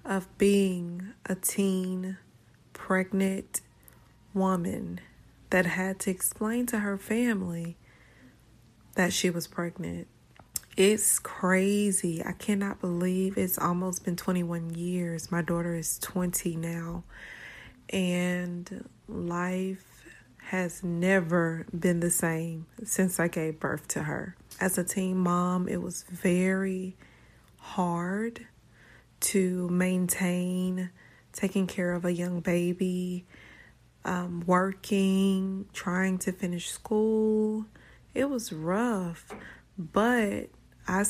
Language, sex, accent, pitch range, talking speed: English, female, American, 175-195 Hz, 105 wpm